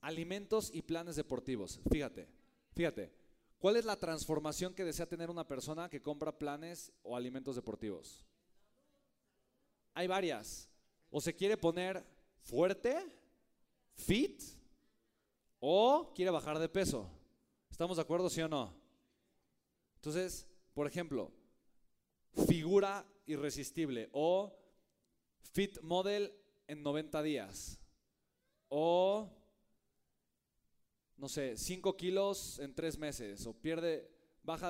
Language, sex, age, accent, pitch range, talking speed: Spanish, male, 30-49, Mexican, 145-185 Hz, 105 wpm